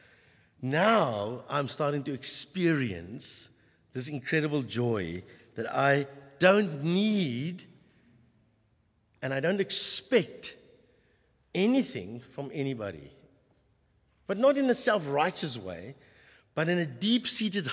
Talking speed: 100 wpm